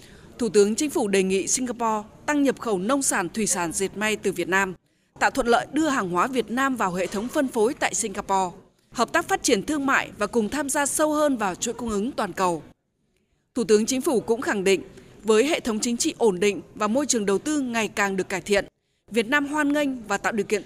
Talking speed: 245 wpm